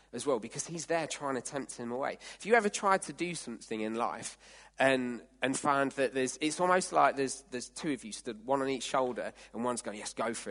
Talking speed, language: 245 wpm, English